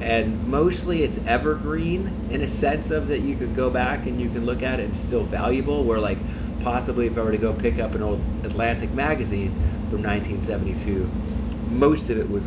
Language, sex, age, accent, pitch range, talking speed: English, male, 40-59, American, 80-110 Hz, 205 wpm